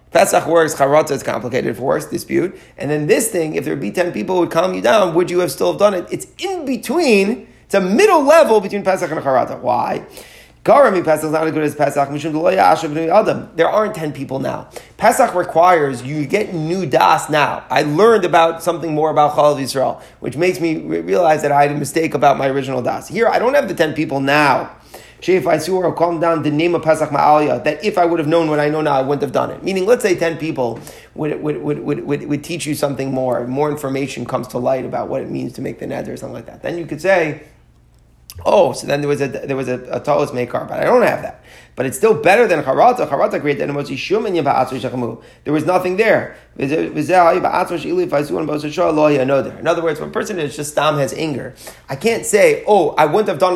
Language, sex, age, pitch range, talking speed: English, male, 30-49, 145-190 Hz, 220 wpm